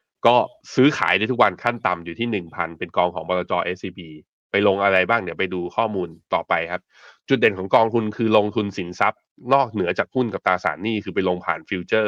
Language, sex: Thai, male